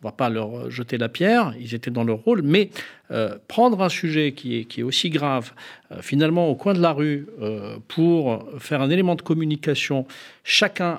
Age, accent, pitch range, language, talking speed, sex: 50-69, French, 125-170 Hz, French, 215 wpm, male